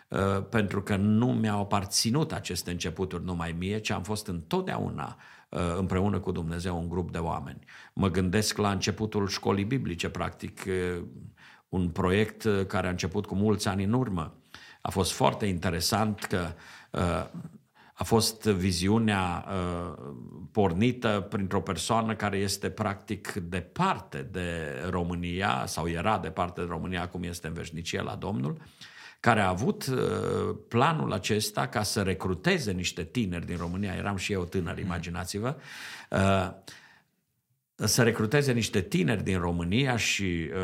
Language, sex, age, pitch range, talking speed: Romanian, male, 50-69, 90-105 Hz, 130 wpm